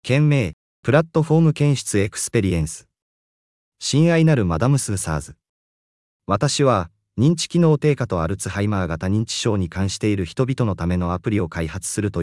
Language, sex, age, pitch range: Japanese, male, 30-49, 85-130 Hz